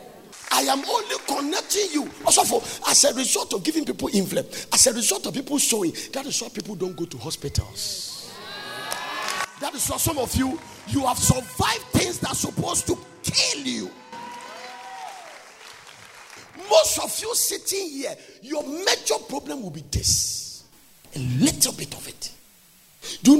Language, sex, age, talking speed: English, male, 50-69, 160 wpm